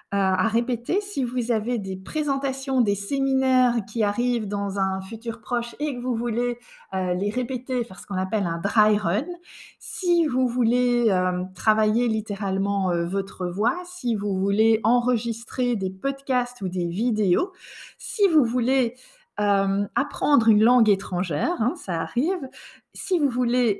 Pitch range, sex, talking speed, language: 195-250 Hz, female, 155 wpm, French